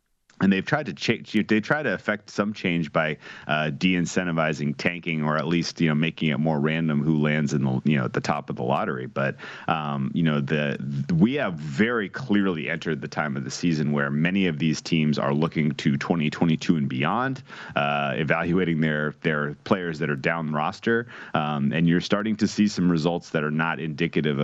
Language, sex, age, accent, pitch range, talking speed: English, male, 30-49, American, 75-85 Hz, 205 wpm